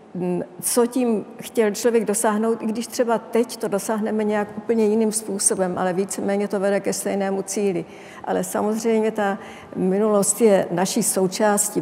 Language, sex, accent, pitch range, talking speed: Czech, female, native, 195-230 Hz, 145 wpm